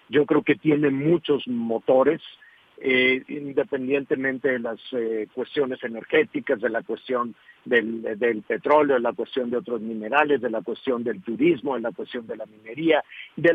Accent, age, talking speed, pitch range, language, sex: Mexican, 50-69, 150 wpm, 140-185 Hz, Spanish, male